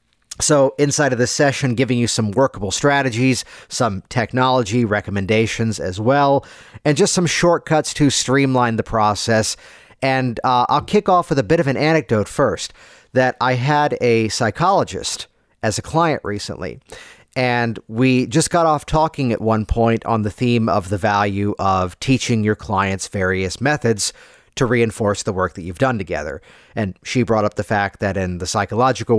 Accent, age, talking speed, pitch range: American, 50-69, 170 wpm, 105-135 Hz